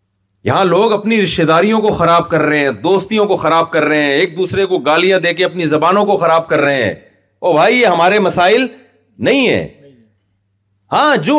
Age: 40-59